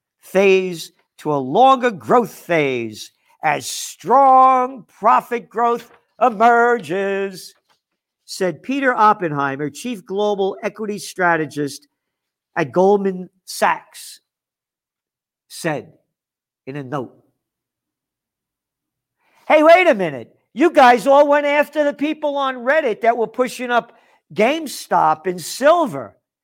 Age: 50-69